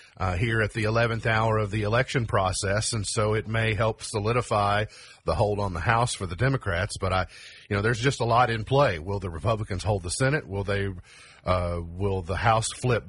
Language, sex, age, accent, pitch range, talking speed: English, male, 40-59, American, 100-125 Hz, 215 wpm